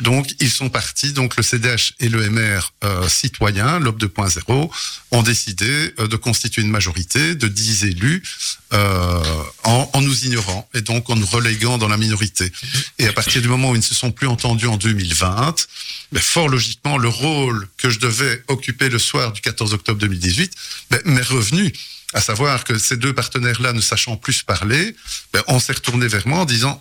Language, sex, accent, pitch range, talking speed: French, male, French, 110-135 Hz, 195 wpm